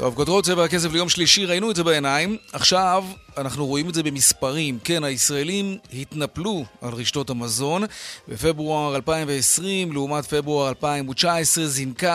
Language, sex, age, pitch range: Hebrew, male, 30-49, 130-170 Hz